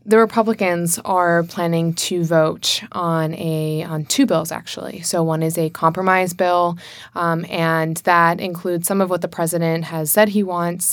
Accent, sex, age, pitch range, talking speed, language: American, female, 20-39, 165-185 Hz, 170 wpm, English